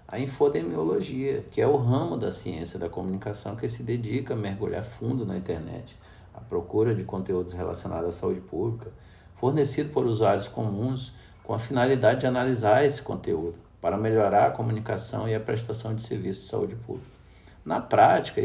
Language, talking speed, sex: Portuguese, 165 wpm, male